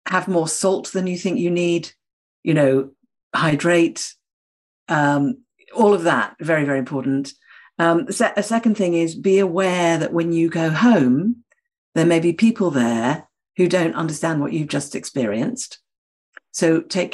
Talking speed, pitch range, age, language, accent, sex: 155 wpm, 145-195 Hz, 50-69, English, British, female